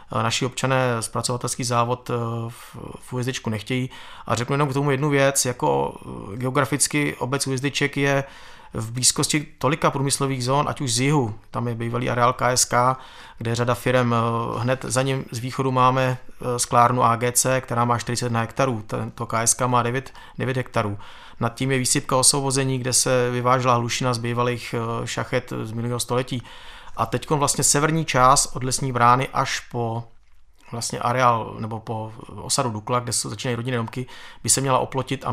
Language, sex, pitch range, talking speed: Czech, male, 115-130 Hz, 160 wpm